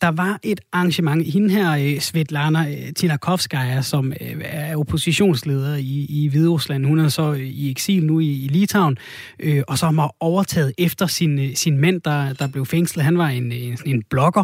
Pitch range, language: 140-175 Hz, Danish